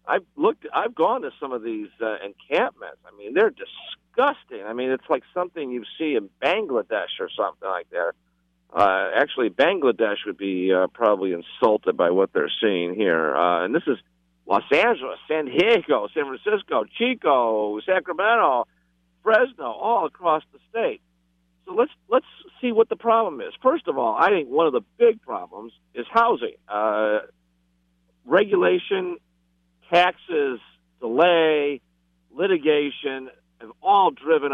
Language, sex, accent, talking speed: English, male, American, 150 wpm